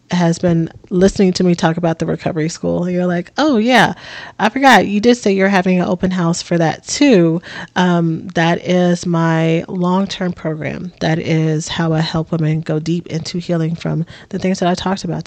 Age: 30-49